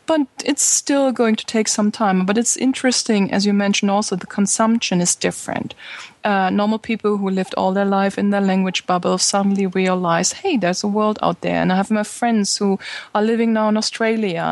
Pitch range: 195-225 Hz